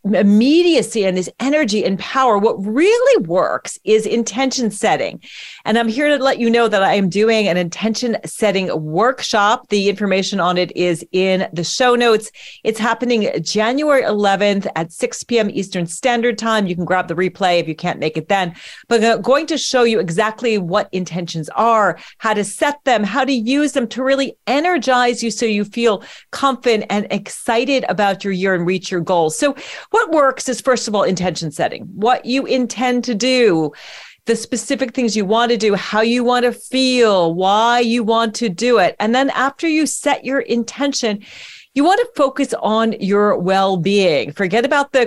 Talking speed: 190 wpm